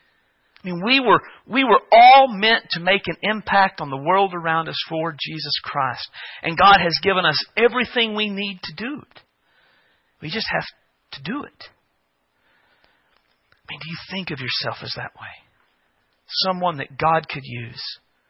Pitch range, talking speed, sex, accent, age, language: 125-175 Hz, 165 wpm, male, American, 40-59, English